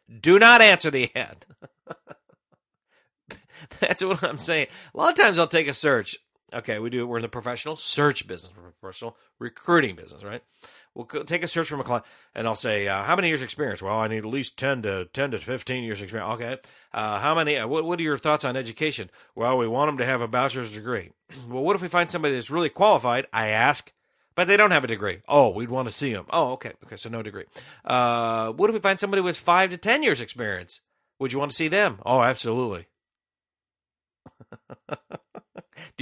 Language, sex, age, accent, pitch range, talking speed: English, male, 40-59, American, 120-170 Hz, 215 wpm